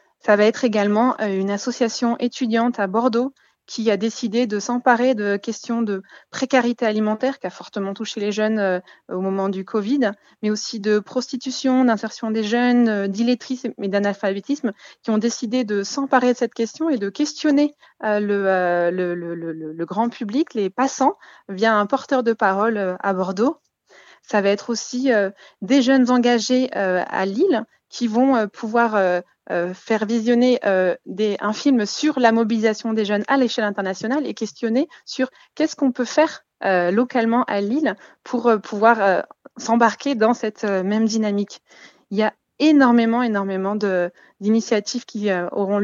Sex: female